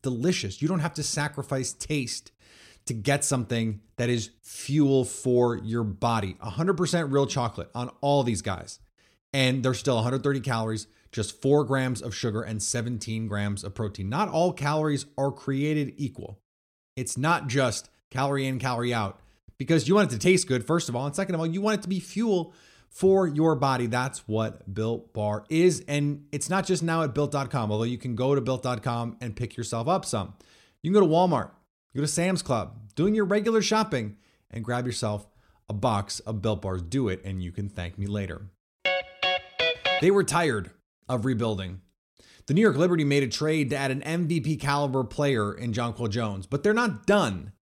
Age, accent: 30-49, American